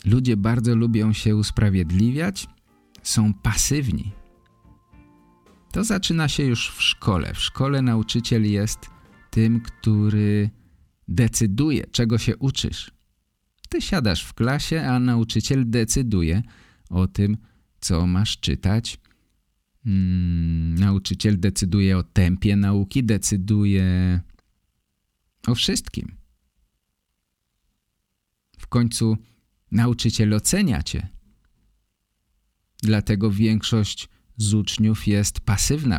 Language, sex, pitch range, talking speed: Polish, male, 95-125 Hz, 90 wpm